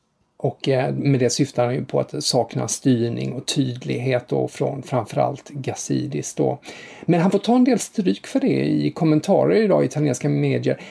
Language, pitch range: English, 130-170 Hz